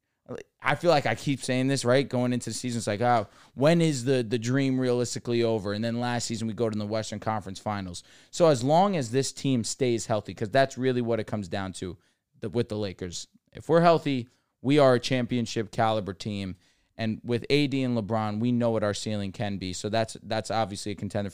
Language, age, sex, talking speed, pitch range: English, 20-39, male, 220 wpm, 110-130 Hz